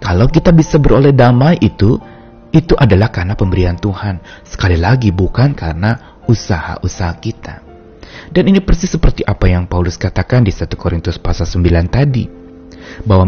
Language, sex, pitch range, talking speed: Indonesian, male, 95-145 Hz, 145 wpm